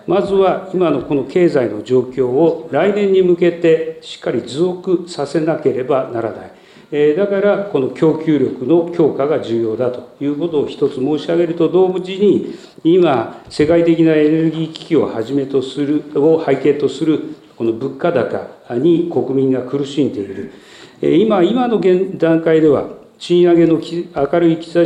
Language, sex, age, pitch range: Japanese, male, 40-59, 135-180 Hz